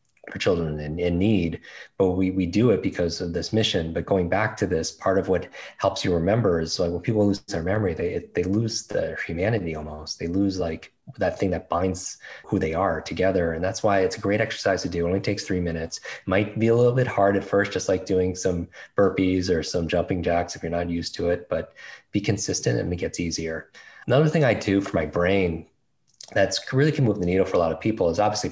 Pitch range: 85-100 Hz